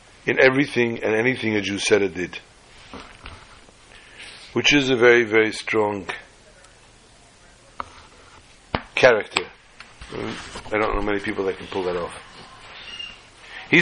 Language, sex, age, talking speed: English, male, 60-79, 115 wpm